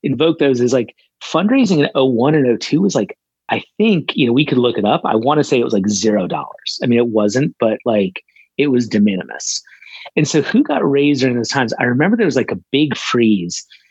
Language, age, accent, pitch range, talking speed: English, 30-49, American, 115-150 Hz, 235 wpm